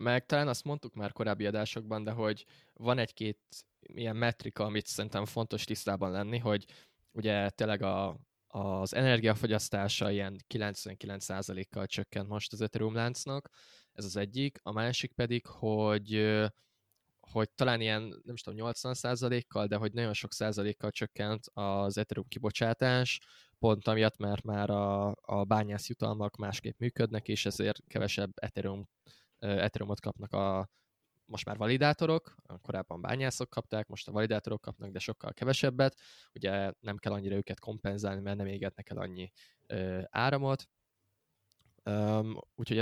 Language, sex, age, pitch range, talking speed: Hungarian, male, 10-29, 100-125 Hz, 135 wpm